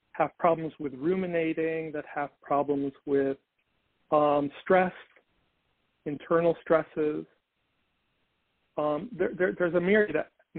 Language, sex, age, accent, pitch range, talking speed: English, male, 40-59, American, 145-175 Hz, 100 wpm